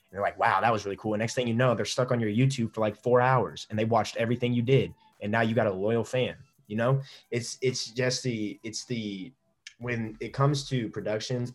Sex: male